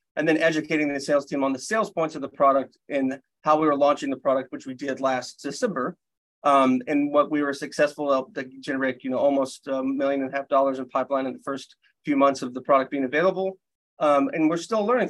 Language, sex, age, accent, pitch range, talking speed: English, male, 30-49, American, 135-170 Hz, 240 wpm